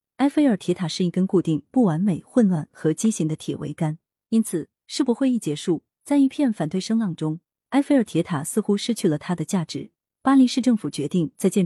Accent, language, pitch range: native, Chinese, 155-220 Hz